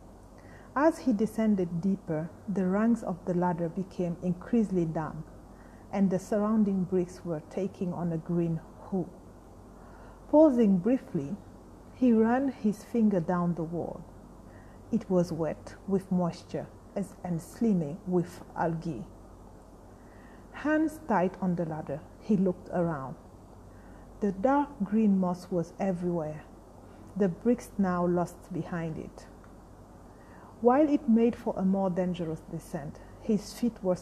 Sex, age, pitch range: female, 40-59, 165-210 Hz